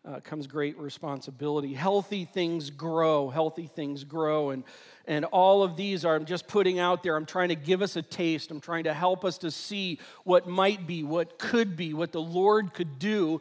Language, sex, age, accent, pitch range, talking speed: English, male, 40-59, American, 160-195 Hz, 205 wpm